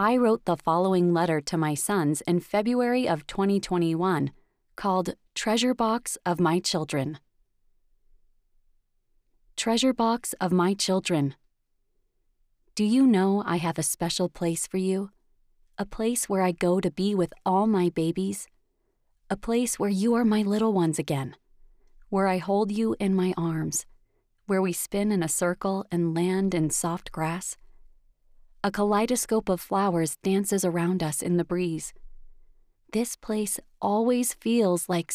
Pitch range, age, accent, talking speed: 170-210 Hz, 30-49, American, 145 wpm